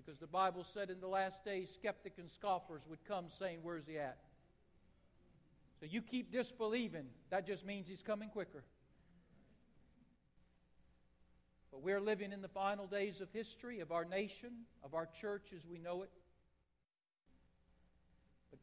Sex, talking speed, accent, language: male, 150 wpm, American, English